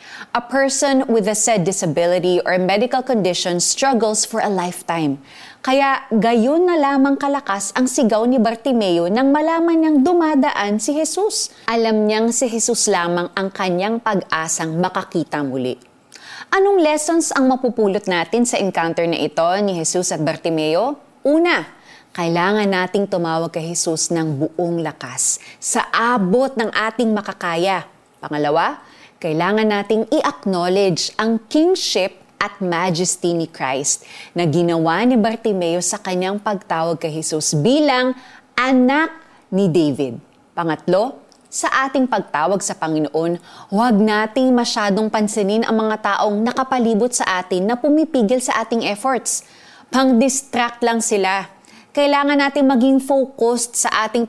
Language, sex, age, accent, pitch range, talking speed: Filipino, female, 20-39, native, 175-255 Hz, 130 wpm